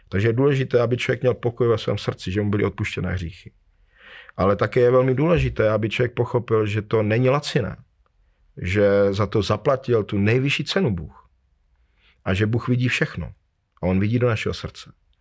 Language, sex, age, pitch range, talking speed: Slovak, male, 40-59, 95-125 Hz, 180 wpm